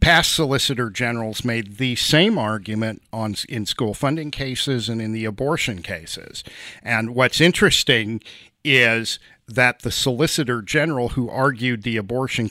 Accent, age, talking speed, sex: American, 50-69, 135 wpm, male